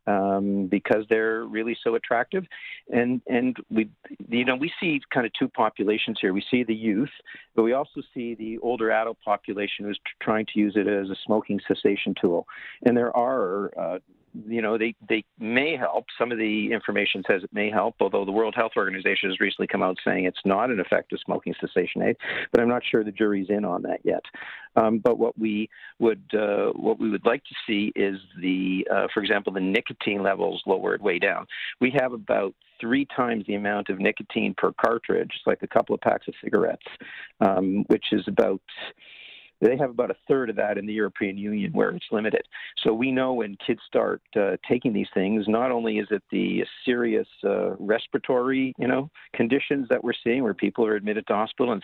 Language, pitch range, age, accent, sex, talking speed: English, 105-120 Hz, 50-69, American, male, 205 wpm